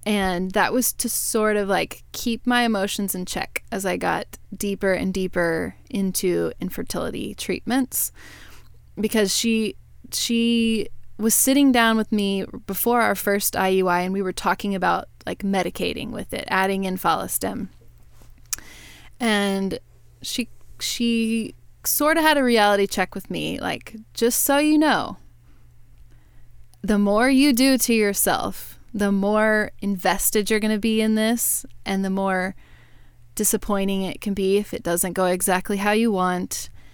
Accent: American